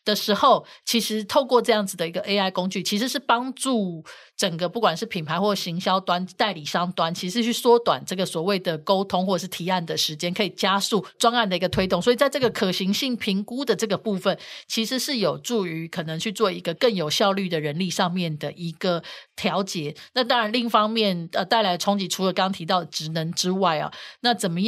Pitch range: 180-220 Hz